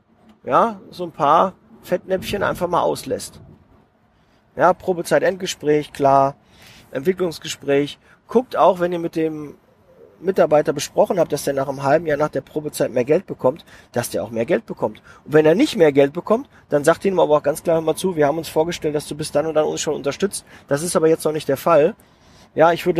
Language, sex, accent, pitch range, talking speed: German, male, German, 135-170 Hz, 210 wpm